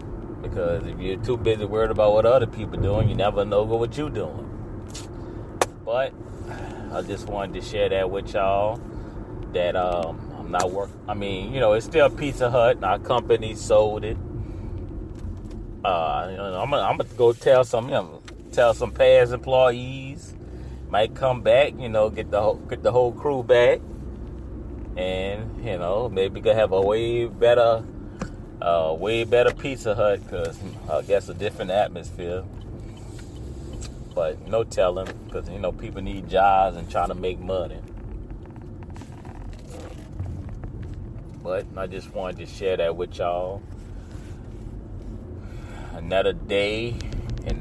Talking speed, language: 150 wpm, English